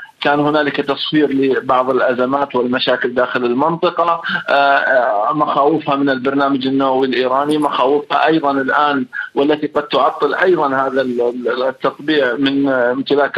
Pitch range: 135-155 Hz